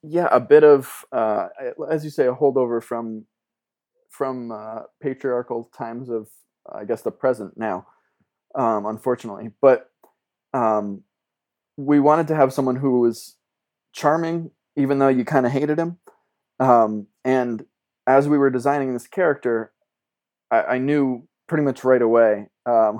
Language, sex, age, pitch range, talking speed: English, male, 20-39, 110-135 Hz, 145 wpm